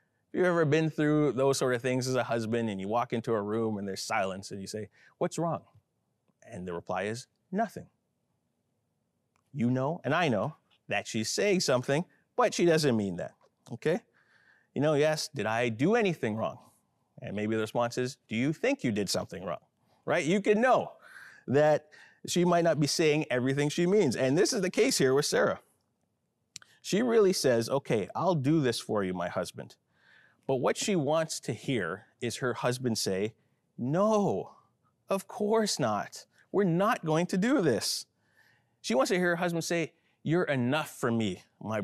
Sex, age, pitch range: male, 30-49, 120-175 Hz